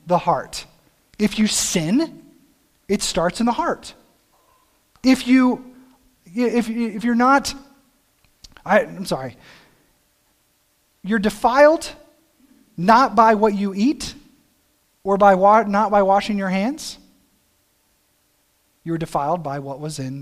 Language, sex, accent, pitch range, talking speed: English, male, American, 145-220 Hz, 115 wpm